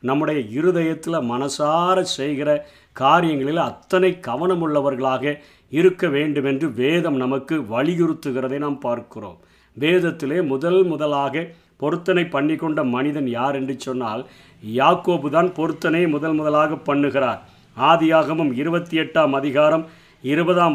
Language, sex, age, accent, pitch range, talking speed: Tamil, male, 50-69, native, 145-175 Hz, 95 wpm